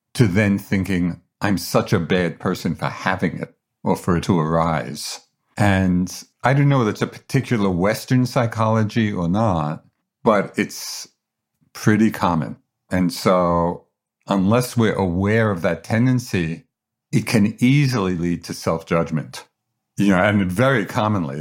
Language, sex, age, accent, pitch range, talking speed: English, male, 50-69, American, 90-125 Hz, 145 wpm